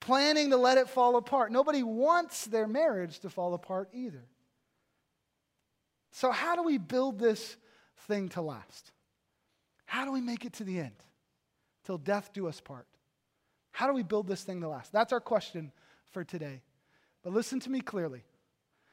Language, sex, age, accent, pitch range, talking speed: English, male, 30-49, American, 175-245 Hz, 170 wpm